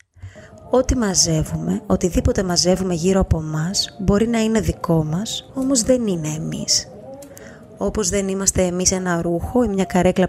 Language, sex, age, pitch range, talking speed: Greek, female, 20-39, 160-205 Hz, 145 wpm